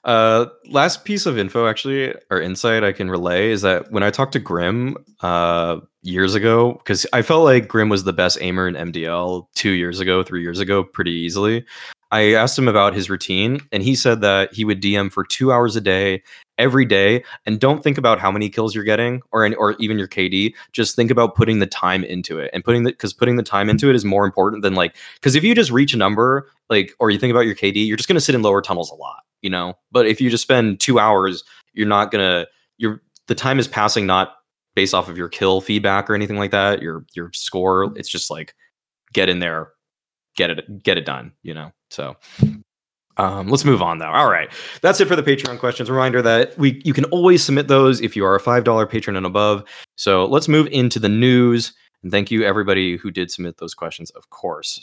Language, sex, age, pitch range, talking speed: English, male, 20-39, 95-120 Hz, 235 wpm